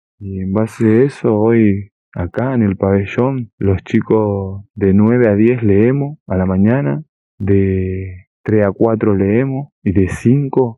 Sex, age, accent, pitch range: male, 20-39, Argentinian, 95-115 Hz